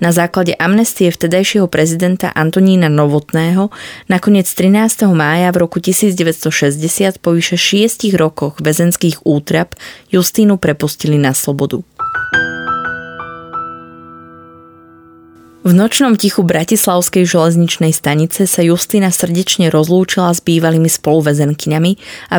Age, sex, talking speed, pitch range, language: 20-39, female, 95 wpm, 160-190 Hz, Slovak